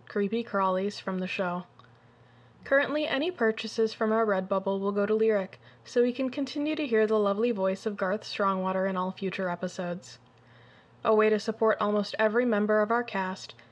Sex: female